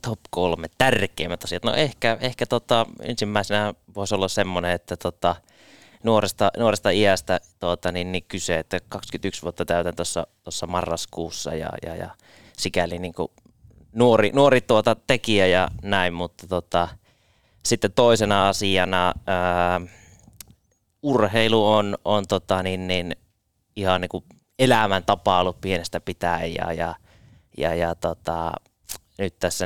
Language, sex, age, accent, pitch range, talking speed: Finnish, male, 20-39, native, 85-105 Hz, 130 wpm